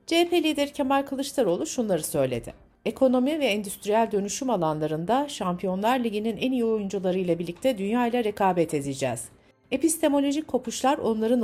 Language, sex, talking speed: Turkish, female, 120 wpm